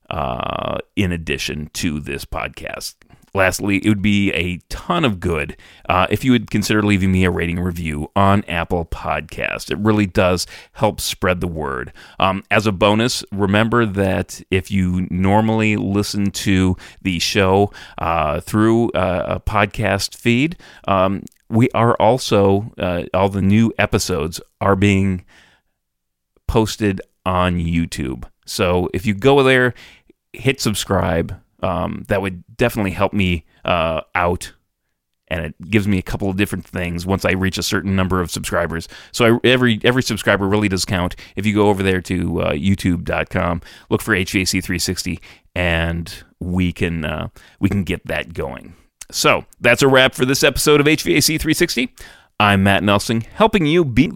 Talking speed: 160 wpm